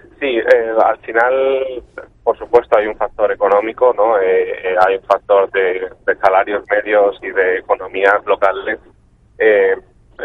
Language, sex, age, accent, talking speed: Spanish, male, 30-49, Spanish, 140 wpm